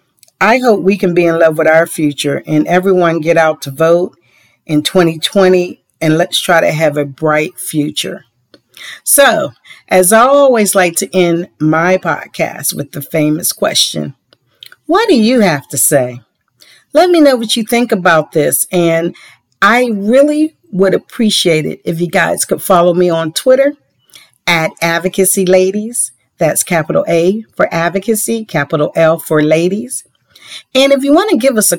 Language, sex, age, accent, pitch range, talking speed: English, female, 50-69, American, 150-210 Hz, 160 wpm